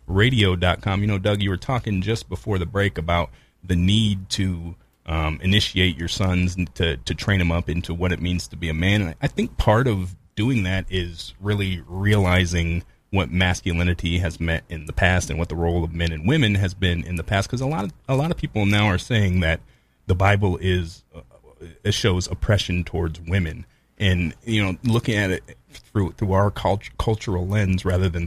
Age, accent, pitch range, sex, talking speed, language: 30-49, American, 90-105 Hz, male, 210 wpm, English